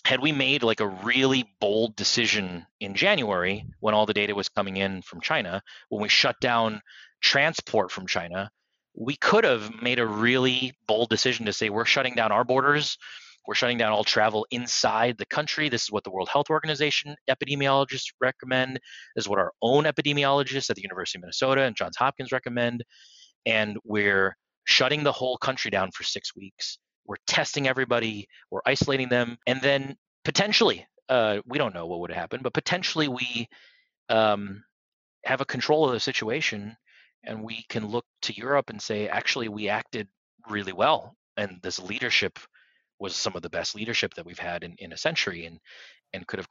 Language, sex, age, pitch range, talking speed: English, male, 30-49, 105-135 Hz, 185 wpm